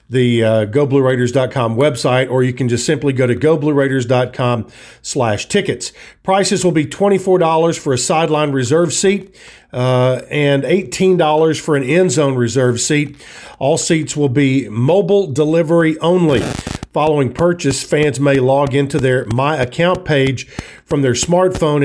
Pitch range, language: 130-165 Hz, English